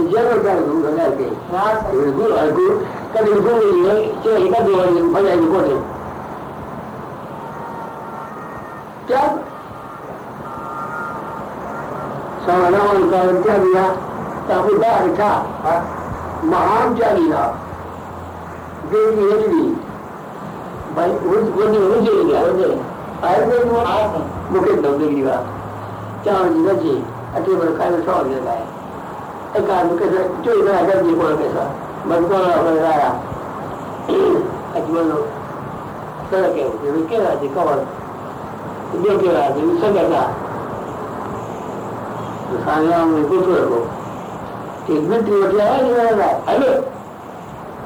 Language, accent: Hindi, native